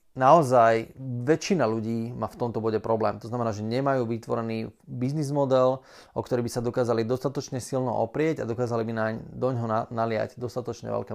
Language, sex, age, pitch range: Slovak, male, 20-39, 110-130 Hz